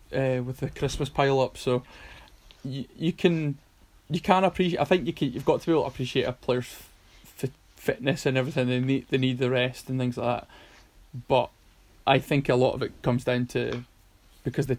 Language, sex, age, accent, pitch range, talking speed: English, male, 20-39, British, 125-135 Hz, 215 wpm